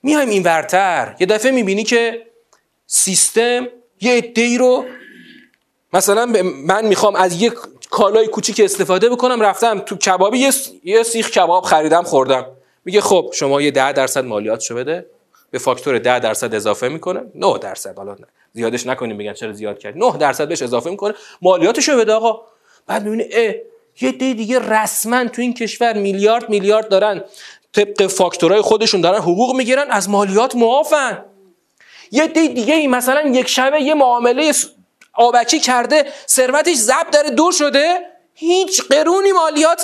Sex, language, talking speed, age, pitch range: male, Persian, 150 wpm, 30-49, 205-300 Hz